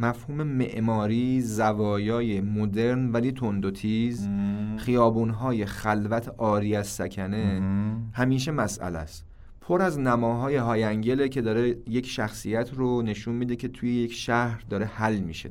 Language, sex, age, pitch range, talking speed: Persian, male, 30-49, 105-130 Hz, 130 wpm